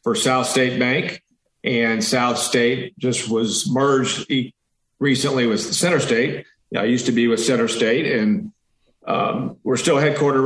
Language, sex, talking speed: English, male, 150 wpm